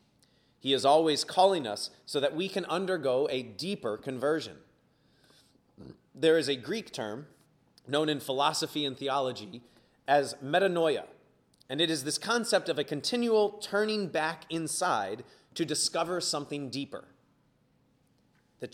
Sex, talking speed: male, 130 wpm